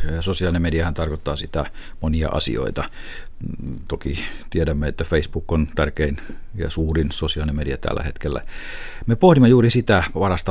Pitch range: 80-95 Hz